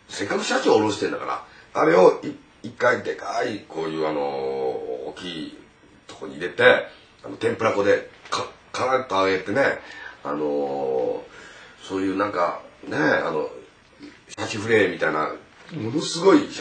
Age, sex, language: 40-59, male, Japanese